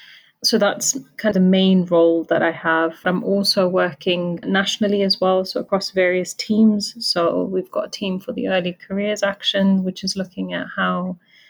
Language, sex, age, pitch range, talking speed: English, female, 30-49, 175-195 Hz, 185 wpm